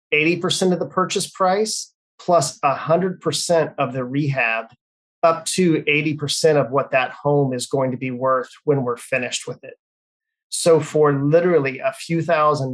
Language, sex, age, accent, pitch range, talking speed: English, male, 30-49, American, 130-160 Hz, 150 wpm